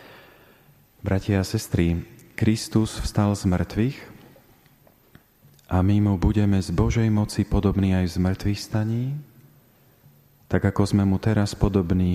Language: Slovak